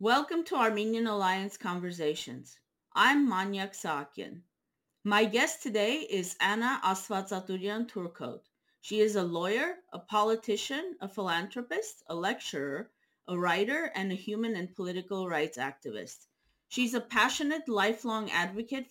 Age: 30-49